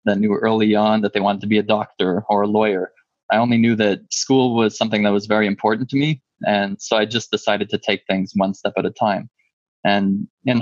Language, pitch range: English, 100-115 Hz